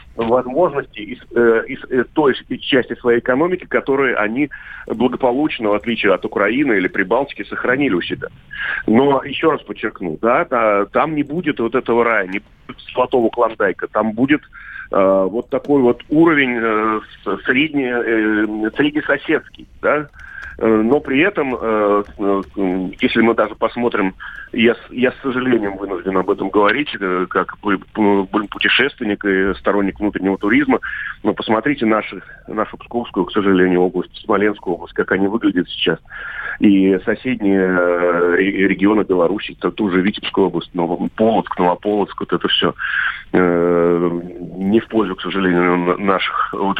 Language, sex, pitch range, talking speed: Russian, male, 95-120 Hz, 135 wpm